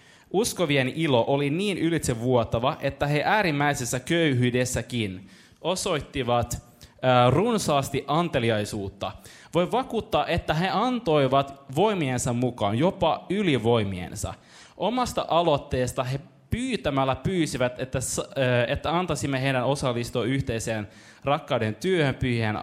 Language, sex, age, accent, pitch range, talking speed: Finnish, male, 20-39, native, 115-155 Hz, 90 wpm